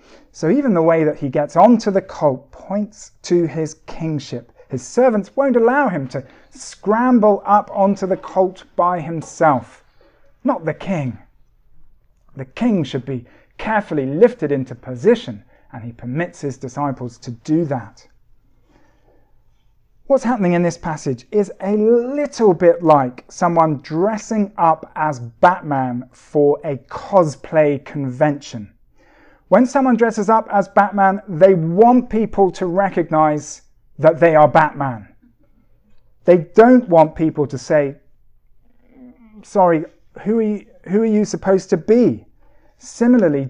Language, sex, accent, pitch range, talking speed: English, male, British, 145-205 Hz, 130 wpm